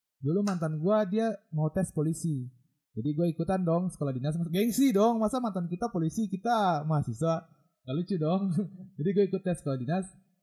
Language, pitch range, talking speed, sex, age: Indonesian, 145-200 Hz, 175 wpm, male, 20-39